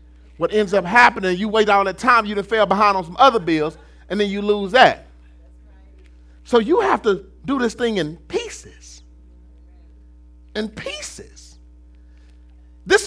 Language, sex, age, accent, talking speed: English, male, 40-59, American, 155 wpm